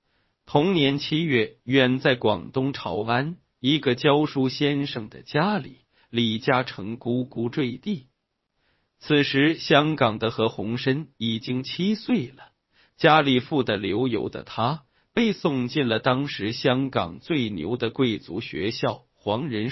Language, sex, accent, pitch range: Chinese, male, native, 120-150 Hz